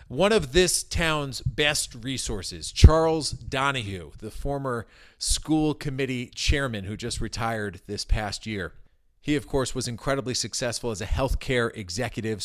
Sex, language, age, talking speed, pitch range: male, English, 40-59, 145 wpm, 105-135 Hz